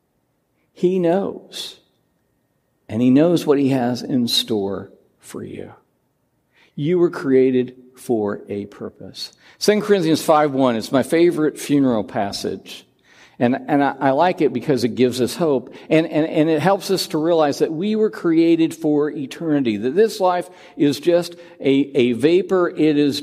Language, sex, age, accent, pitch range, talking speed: English, male, 60-79, American, 125-175 Hz, 160 wpm